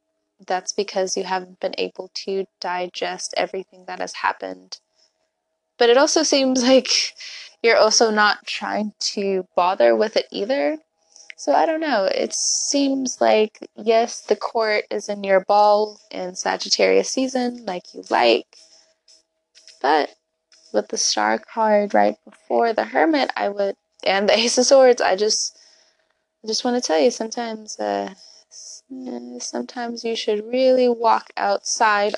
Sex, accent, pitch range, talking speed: female, American, 180-235 Hz, 145 wpm